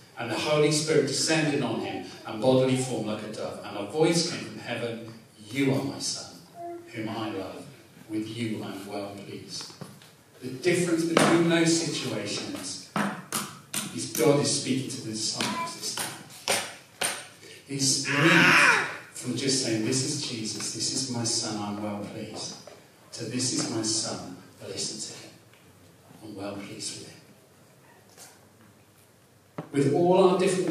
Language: English